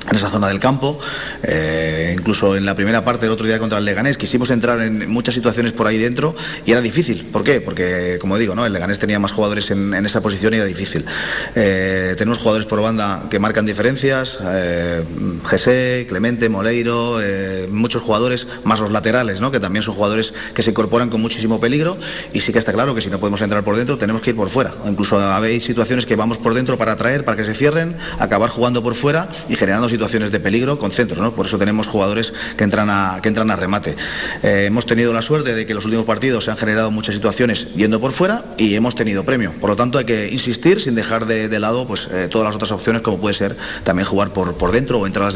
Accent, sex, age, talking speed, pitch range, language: Spanish, male, 30-49, 235 wpm, 100-120 Hz, Spanish